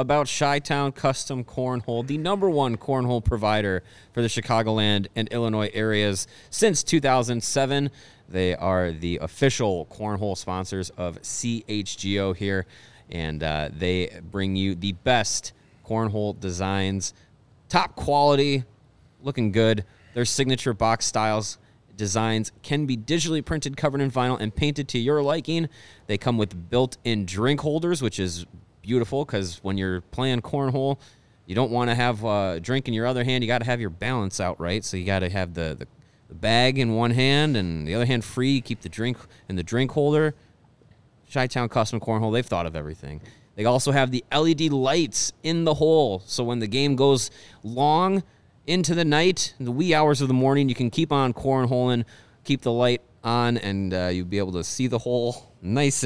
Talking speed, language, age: 175 wpm, English, 30-49